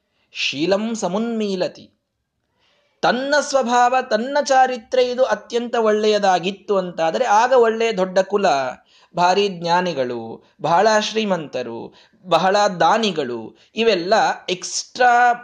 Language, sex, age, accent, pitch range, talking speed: Kannada, male, 20-39, native, 170-240 Hz, 85 wpm